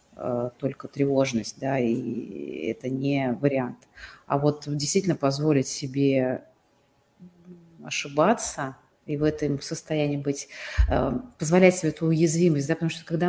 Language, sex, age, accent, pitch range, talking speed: Russian, female, 30-49, native, 135-165 Hz, 115 wpm